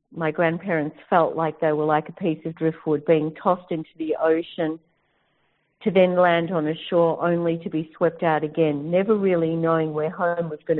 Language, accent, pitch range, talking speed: English, Australian, 150-175 Hz, 195 wpm